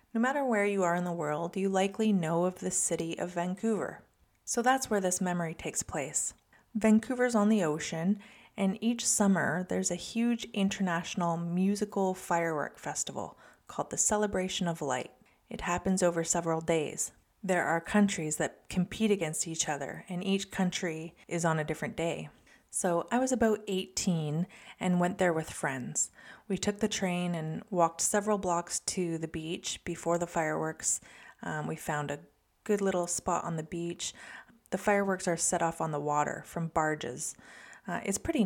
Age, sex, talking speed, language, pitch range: 30-49, female, 170 wpm, English, 165-205 Hz